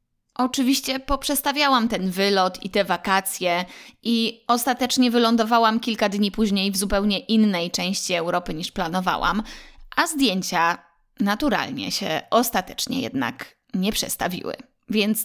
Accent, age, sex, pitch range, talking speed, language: native, 20-39, female, 190-255 Hz, 115 wpm, Polish